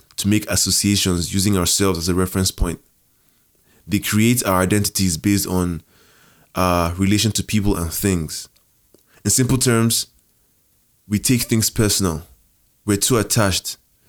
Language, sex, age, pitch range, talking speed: English, male, 20-39, 95-110 Hz, 130 wpm